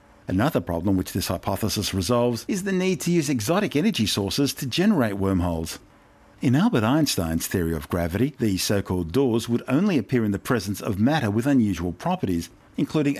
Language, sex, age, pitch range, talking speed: English, male, 50-69, 95-135 Hz, 175 wpm